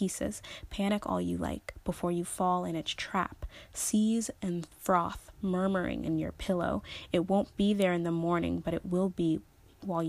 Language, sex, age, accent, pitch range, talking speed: English, female, 20-39, American, 175-200 Hz, 180 wpm